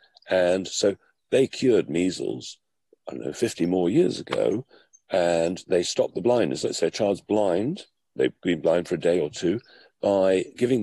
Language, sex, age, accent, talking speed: English, male, 50-69, British, 175 wpm